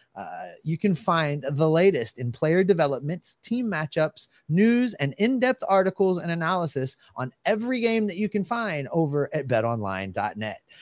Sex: male